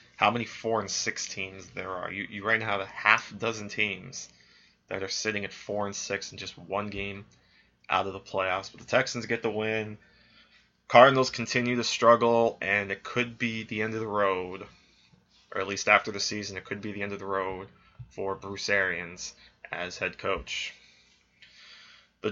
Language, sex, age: English, male, 20-39